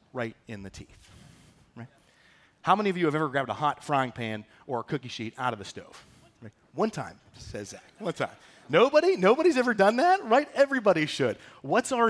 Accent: American